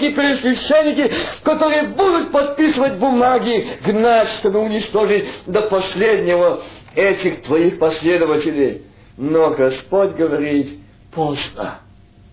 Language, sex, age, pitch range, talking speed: Russian, male, 50-69, 175-265 Hz, 85 wpm